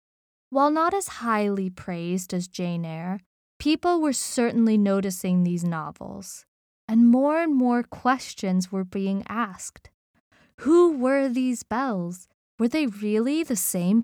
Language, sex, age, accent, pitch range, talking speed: English, female, 20-39, American, 190-255 Hz, 130 wpm